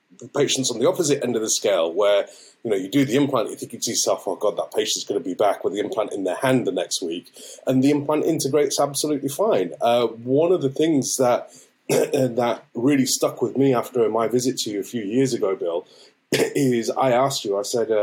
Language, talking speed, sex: English, 235 wpm, male